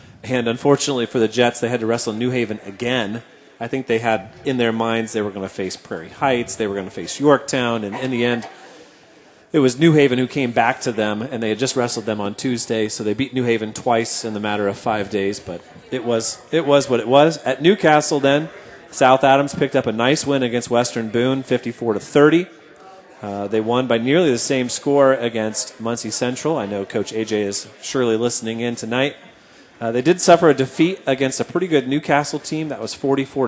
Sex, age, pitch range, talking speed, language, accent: male, 30-49, 110-135 Hz, 220 wpm, English, American